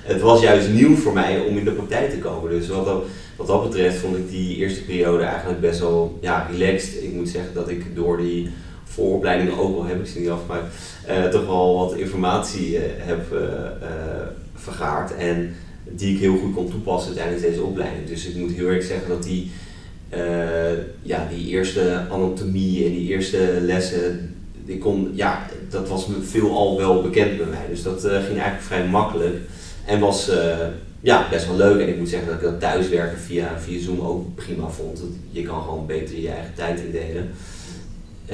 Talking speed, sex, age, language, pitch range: 185 wpm, male, 30-49, Dutch, 85-95 Hz